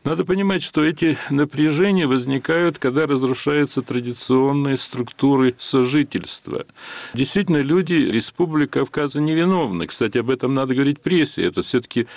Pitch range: 110-145 Hz